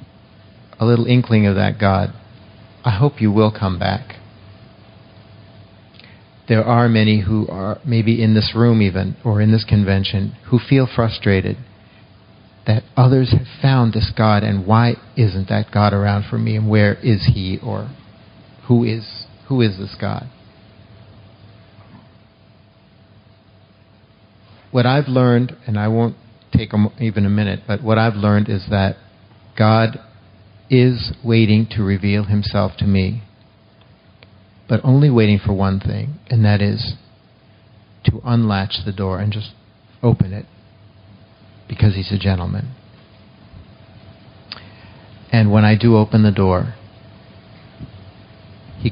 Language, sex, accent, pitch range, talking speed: English, male, American, 100-110 Hz, 130 wpm